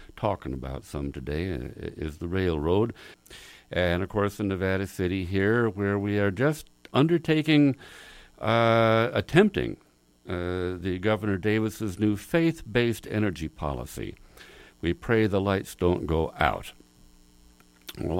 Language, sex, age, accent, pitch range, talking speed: English, male, 60-79, American, 90-125 Hz, 120 wpm